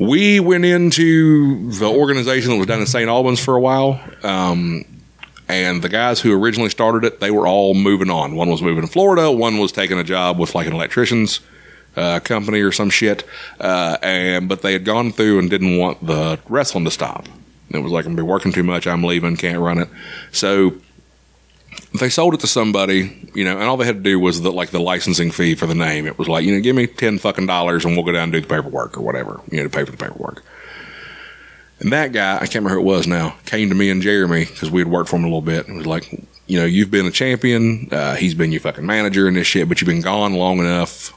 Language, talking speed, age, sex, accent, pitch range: English, 250 wpm, 30-49, male, American, 85-110 Hz